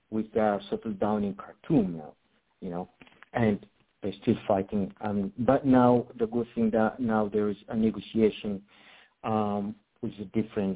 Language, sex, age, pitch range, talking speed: English, male, 50-69, 95-115 Hz, 155 wpm